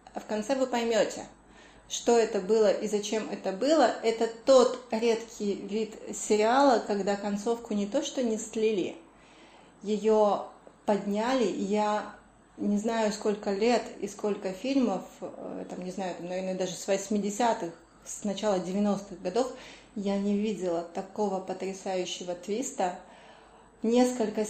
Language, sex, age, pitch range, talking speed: Russian, female, 20-39, 205-255 Hz, 130 wpm